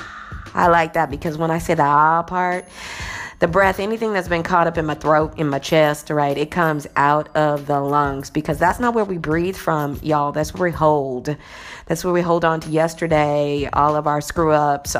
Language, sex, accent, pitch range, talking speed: English, female, American, 150-185 Hz, 210 wpm